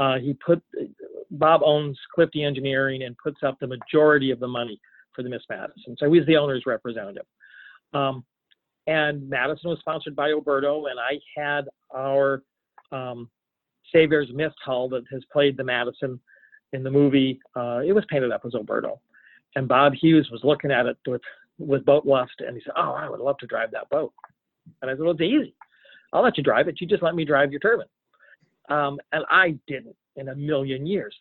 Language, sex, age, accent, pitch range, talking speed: English, male, 40-59, American, 130-160 Hz, 195 wpm